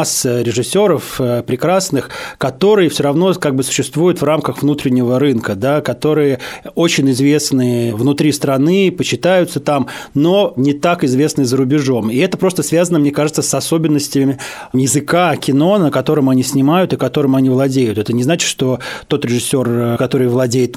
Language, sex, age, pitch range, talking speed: Russian, male, 20-39, 125-145 Hz, 150 wpm